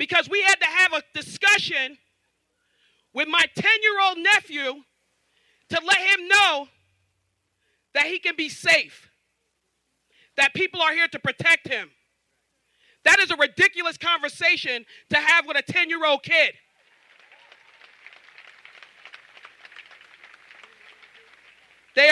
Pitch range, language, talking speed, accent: 295-375 Hz, English, 115 wpm, American